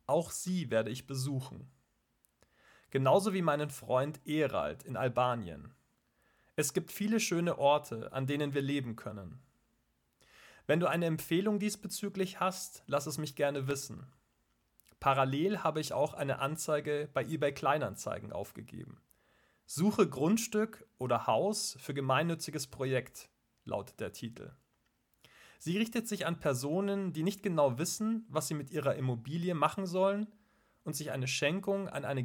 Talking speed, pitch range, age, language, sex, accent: 140 wpm, 130-185 Hz, 40-59, German, male, German